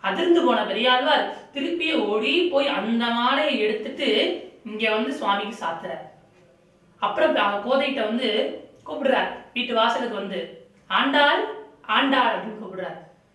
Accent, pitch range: native, 200-275 Hz